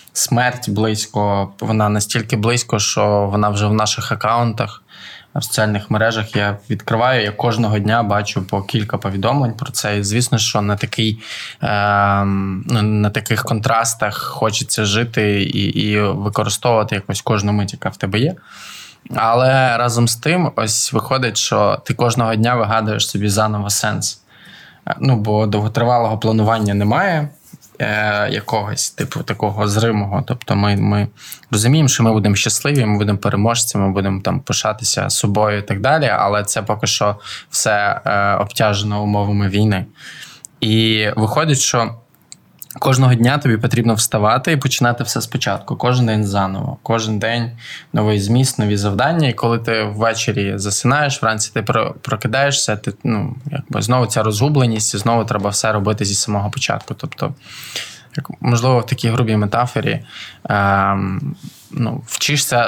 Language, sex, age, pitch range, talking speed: Ukrainian, male, 20-39, 105-125 Hz, 145 wpm